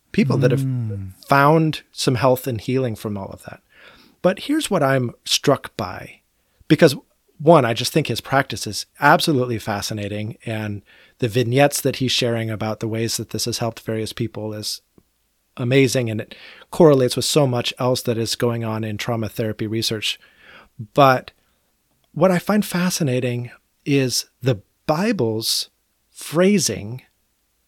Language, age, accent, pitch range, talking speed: English, 40-59, American, 115-150 Hz, 150 wpm